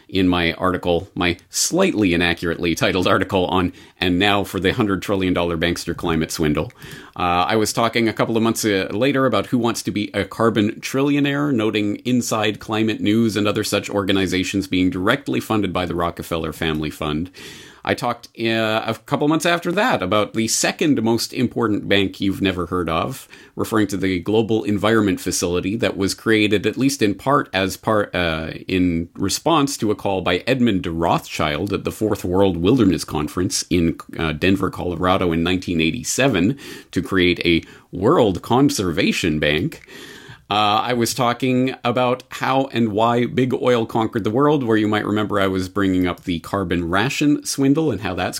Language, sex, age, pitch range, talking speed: English, male, 40-59, 90-125 Hz, 175 wpm